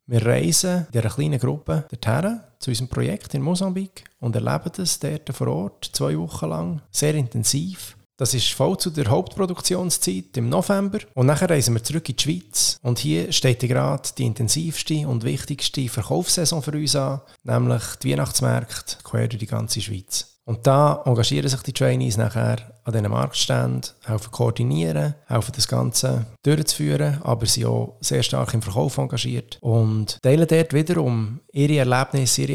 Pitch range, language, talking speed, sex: 110-145 Hz, English, 165 wpm, male